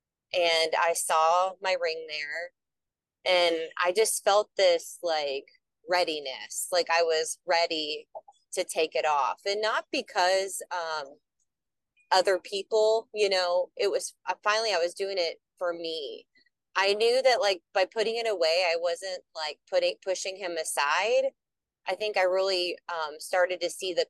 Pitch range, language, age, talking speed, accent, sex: 170-225 Hz, English, 30-49, 155 wpm, American, female